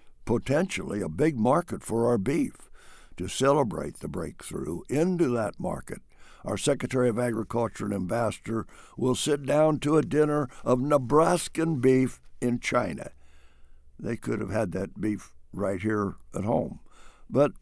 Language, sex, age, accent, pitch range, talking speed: English, male, 60-79, American, 100-140 Hz, 145 wpm